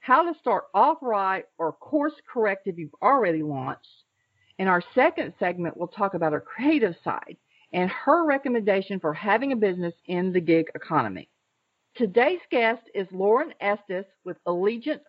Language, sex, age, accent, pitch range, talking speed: English, female, 50-69, American, 175-255 Hz, 160 wpm